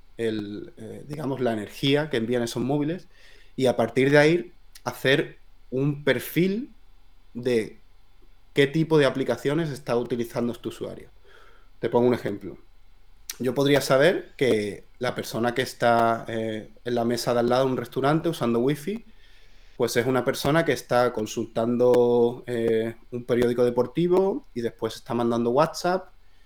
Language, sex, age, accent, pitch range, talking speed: Spanish, male, 30-49, Spanish, 115-135 Hz, 150 wpm